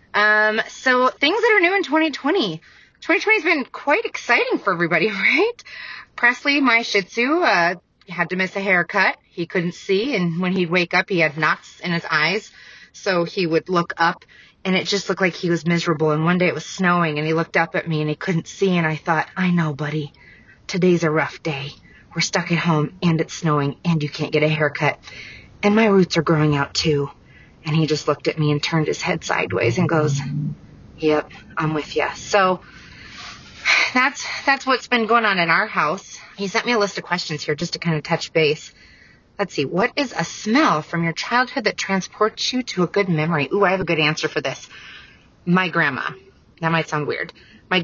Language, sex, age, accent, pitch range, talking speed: English, female, 30-49, American, 155-205 Hz, 215 wpm